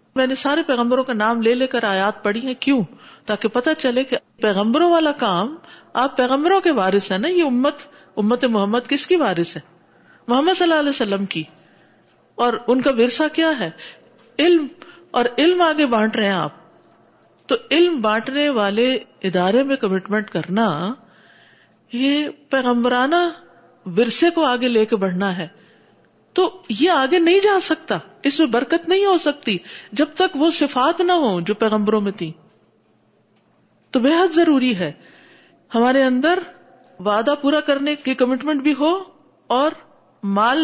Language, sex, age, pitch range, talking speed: Urdu, female, 50-69, 225-315 Hz, 160 wpm